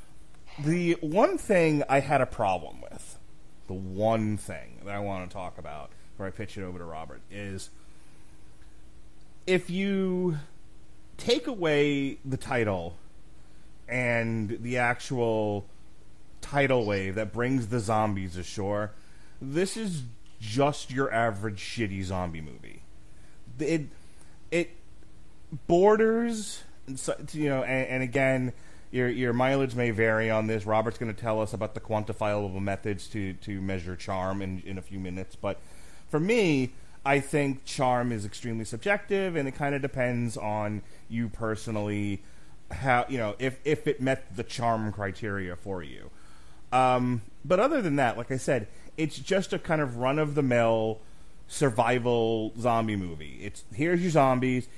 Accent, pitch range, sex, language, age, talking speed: American, 100-135 Hz, male, English, 30-49, 145 wpm